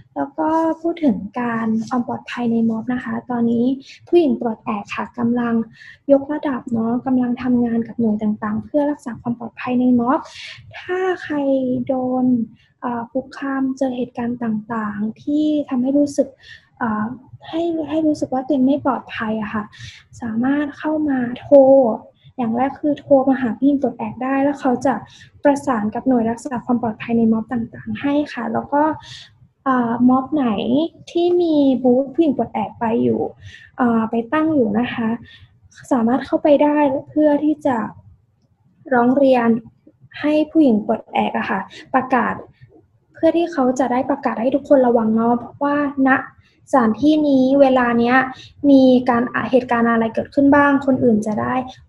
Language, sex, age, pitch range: Thai, female, 20-39, 225-275 Hz